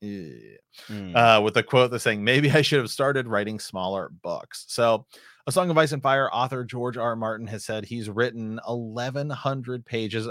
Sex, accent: male, American